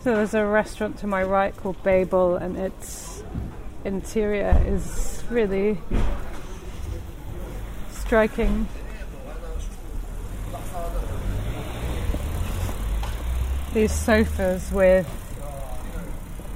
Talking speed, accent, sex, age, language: 65 wpm, British, female, 30-49, English